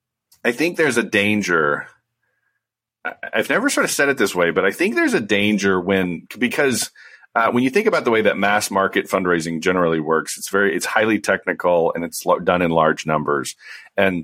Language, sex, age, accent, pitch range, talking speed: English, male, 40-59, American, 80-100 Hz, 195 wpm